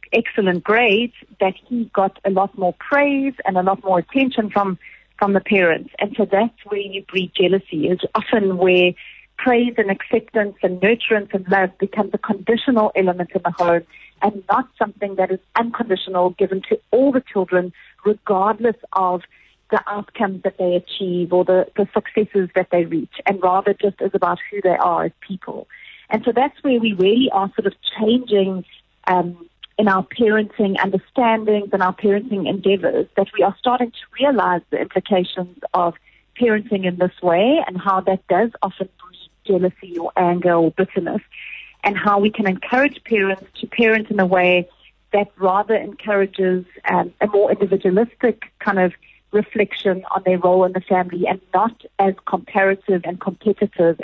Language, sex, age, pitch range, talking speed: English, female, 40-59, 185-215 Hz, 170 wpm